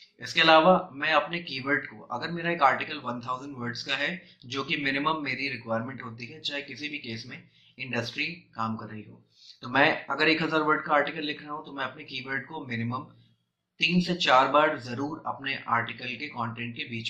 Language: Hindi